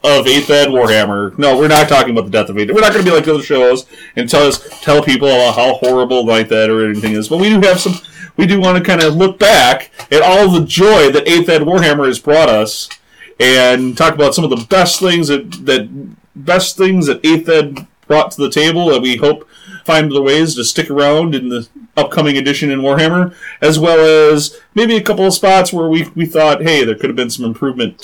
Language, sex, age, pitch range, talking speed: English, male, 30-49, 120-175 Hz, 235 wpm